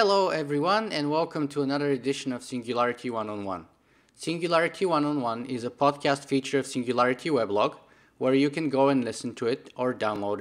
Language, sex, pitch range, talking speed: English, male, 130-165 Hz, 190 wpm